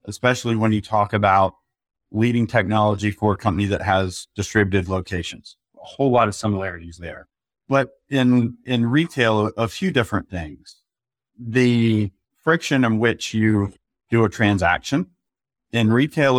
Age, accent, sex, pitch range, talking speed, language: 40-59, American, male, 100-115 Hz, 140 wpm, English